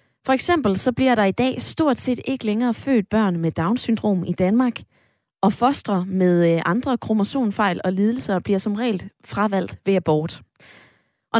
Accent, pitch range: native, 180-235 Hz